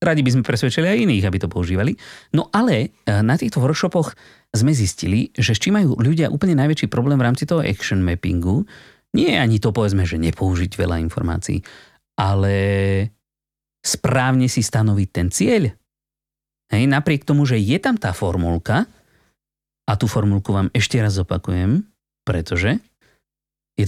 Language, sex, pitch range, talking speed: Slovak, male, 100-155 Hz, 150 wpm